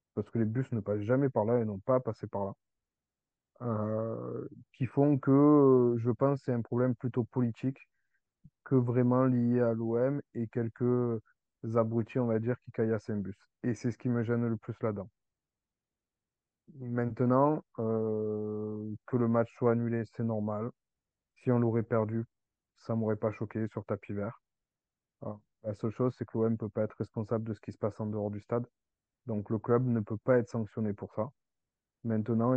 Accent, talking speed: French, 190 wpm